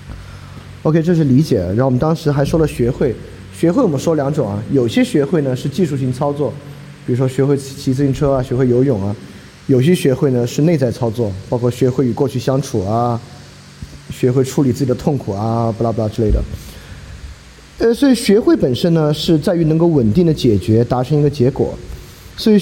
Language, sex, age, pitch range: Chinese, male, 20-39, 120-160 Hz